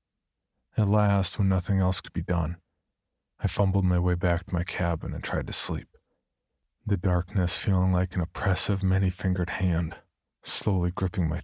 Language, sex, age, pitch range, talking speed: English, male, 40-59, 85-100 Hz, 165 wpm